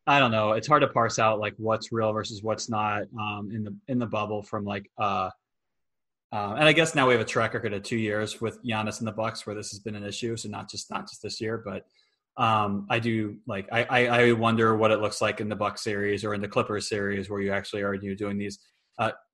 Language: English